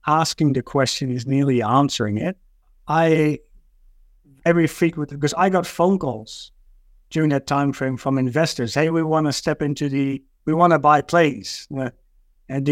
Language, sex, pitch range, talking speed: English, male, 135-160 Hz, 165 wpm